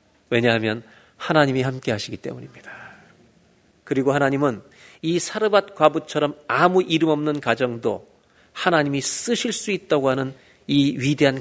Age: 40-59